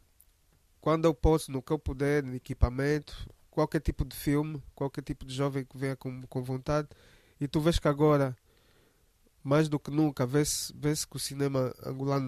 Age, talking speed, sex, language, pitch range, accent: 20-39, 180 wpm, male, Portuguese, 130-155 Hz, Brazilian